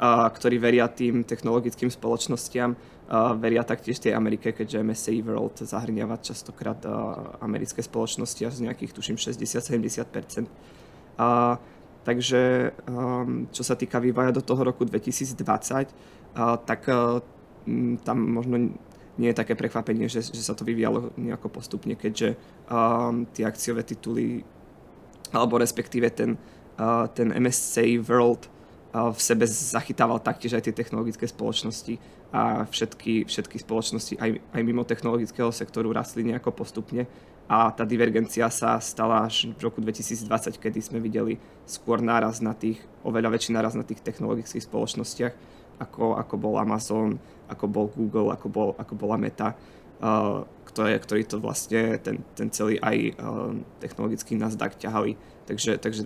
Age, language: 20-39, Czech